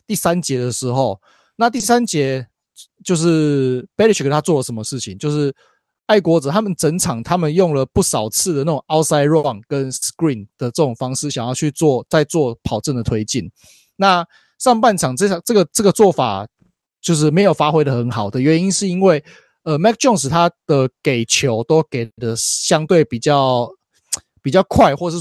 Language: Chinese